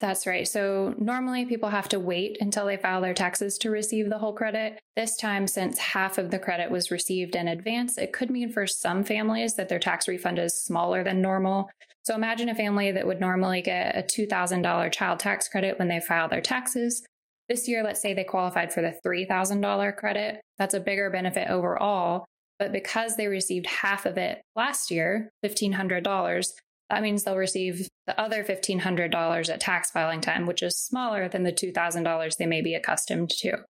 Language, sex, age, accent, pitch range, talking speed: English, female, 10-29, American, 175-215 Hz, 195 wpm